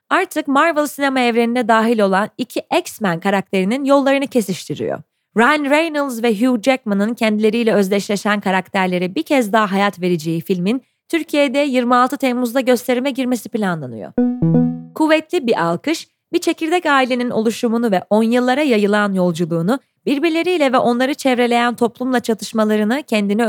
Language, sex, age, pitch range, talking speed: Turkish, female, 30-49, 205-270 Hz, 130 wpm